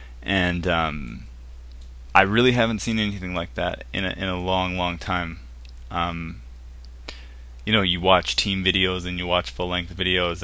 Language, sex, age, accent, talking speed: English, male, 20-39, American, 155 wpm